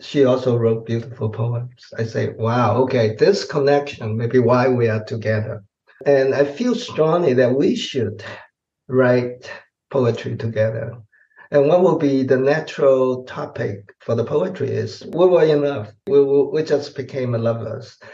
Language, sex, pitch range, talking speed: English, male, 120-145 Hz, 160 wpm